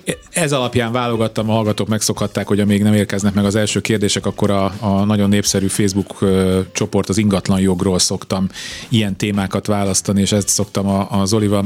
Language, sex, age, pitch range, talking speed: Hungarian, male, 30-49, 95-120 Hz, 175 wpm